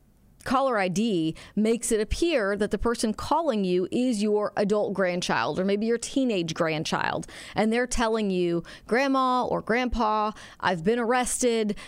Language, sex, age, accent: English, female, 40-59, American